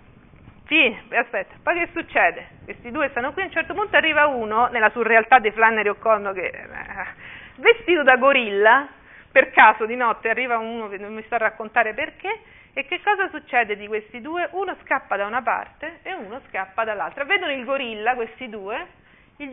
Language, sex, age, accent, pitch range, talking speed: Italian, female, 40-59, native, 225-320 Hz, 185 wpm